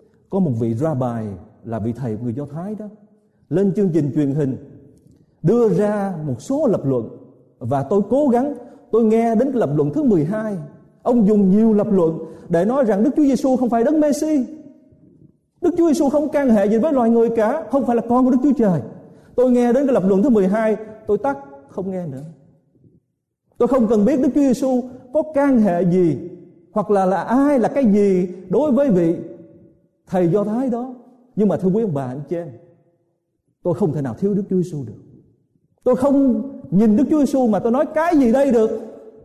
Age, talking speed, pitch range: 30-49, 210 wpm, 155-245 Hz